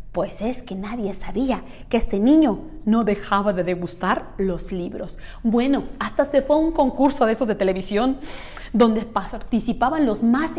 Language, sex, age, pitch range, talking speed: Spanish, female, 30-49, 210-325 Hz, 165 wpm